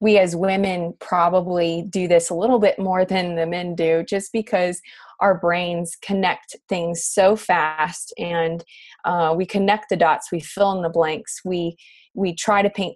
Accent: American